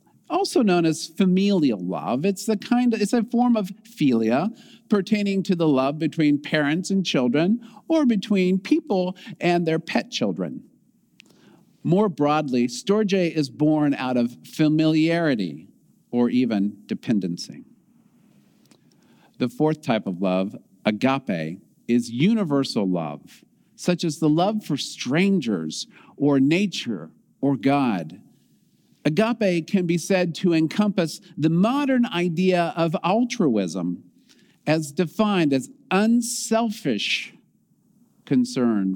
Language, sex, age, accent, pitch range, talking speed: English, male, 50-69, American, 140-220 Hz, 115 wpm